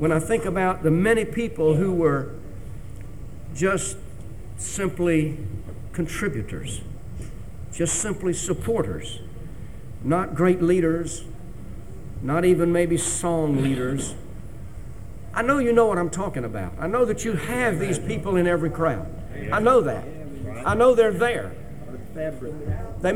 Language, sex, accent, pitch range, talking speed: English, male, American, 120-190 Hz, 130 wpm